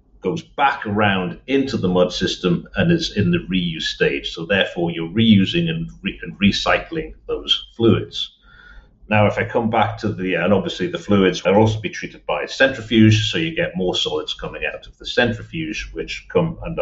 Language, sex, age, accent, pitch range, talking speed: English, male, 50-69, British, 100-150 Hz, 185 wpm